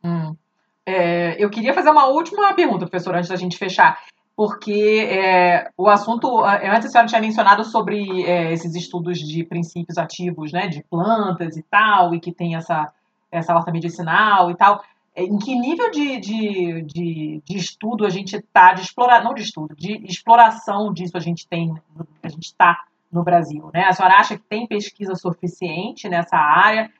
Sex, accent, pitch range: female, Brazilian, 170-220 Hz